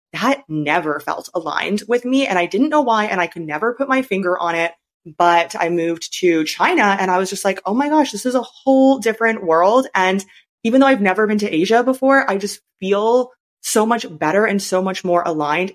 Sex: female